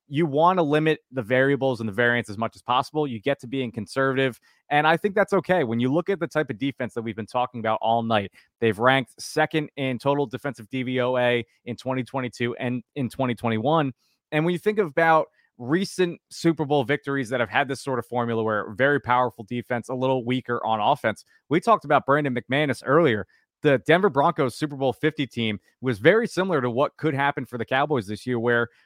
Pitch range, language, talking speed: 120-150 Hz, English, 210 wpm